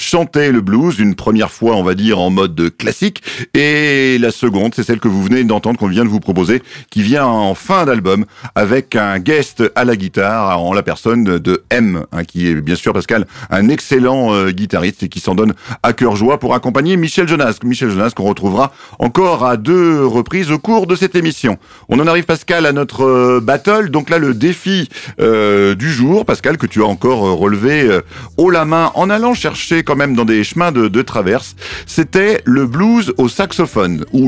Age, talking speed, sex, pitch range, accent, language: 50-69, 205 wpm, male, 110-155 Hz, French, French